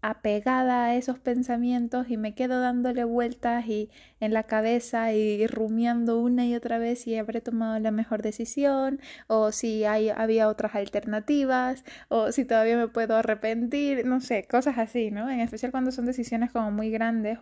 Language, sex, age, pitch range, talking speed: Spanish, female, 20-39, 215-250 Hz, 170 wpm